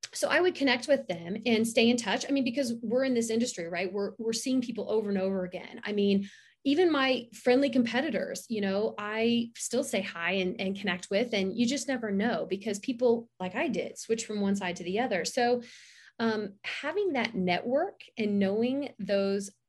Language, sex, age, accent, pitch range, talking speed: English, female, 30-49, American, 185-245 Hz, 205 wpm